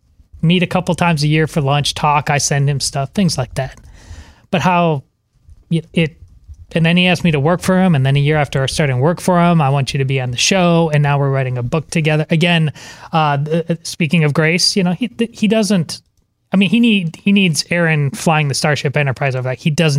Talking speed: 240 wpm